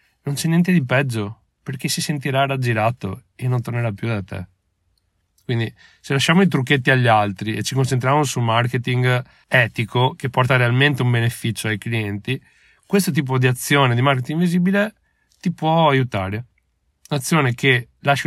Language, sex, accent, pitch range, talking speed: Italian, male, native, 115-145 Hz, 160 wpm